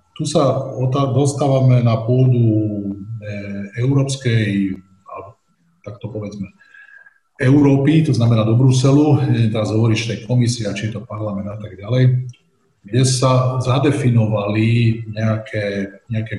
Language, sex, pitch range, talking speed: Slovak, male, 110-130 Hz, 120 wpm